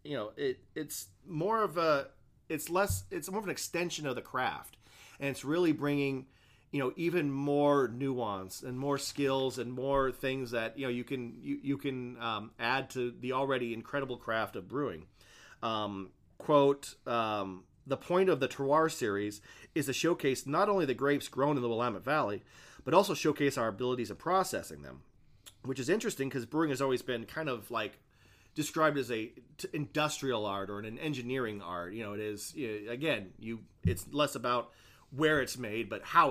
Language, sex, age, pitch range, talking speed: English, male, 40-59, 115-145 Hz, 185 wpm